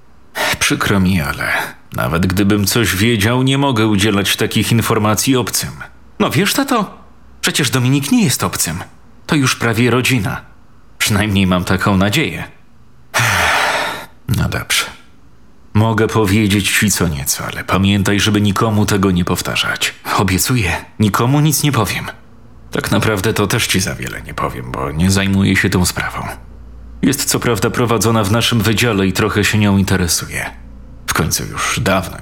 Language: Polish